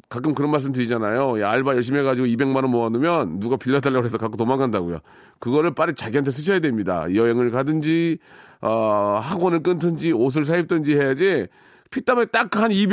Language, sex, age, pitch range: Korean, male, 40-59, 115-170 Hz